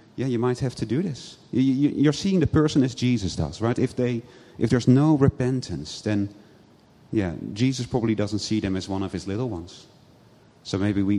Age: 40-59